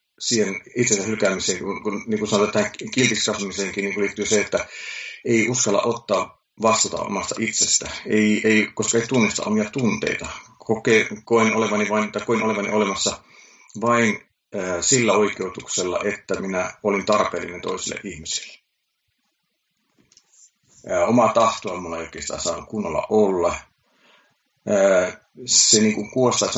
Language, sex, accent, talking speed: Finnish, male, native, 120 wpm